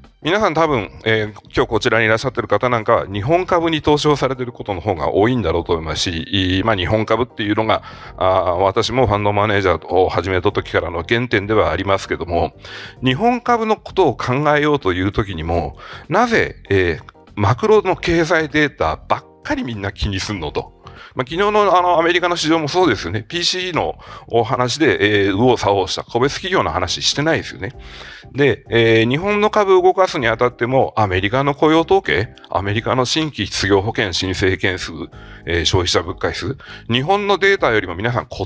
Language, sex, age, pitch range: Japanese, male, 40-59, 100-160 Hz